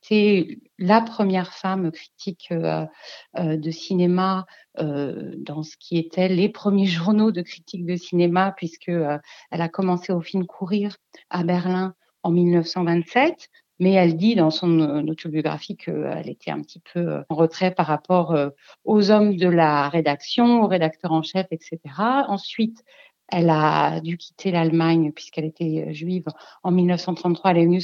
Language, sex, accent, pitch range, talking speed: French, female, French, 165-210 Hz, 145 wpm